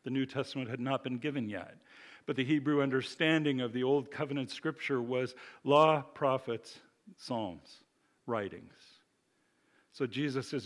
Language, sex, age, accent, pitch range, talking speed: English, male, 50-69, American, 125-155 Hz, 140 wpm